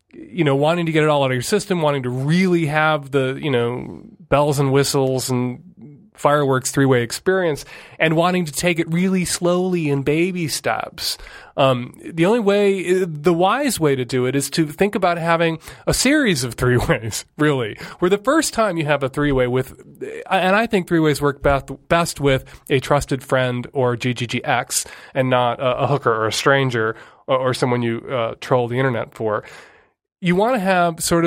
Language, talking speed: English, 185 wpm